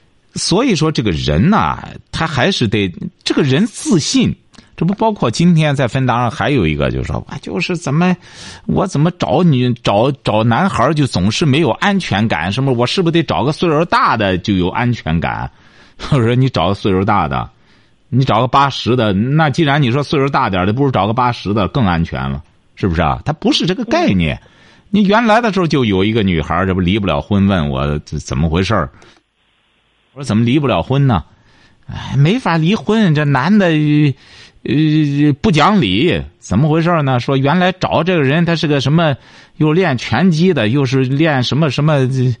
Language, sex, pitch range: Chinese, male, 105-165 Hz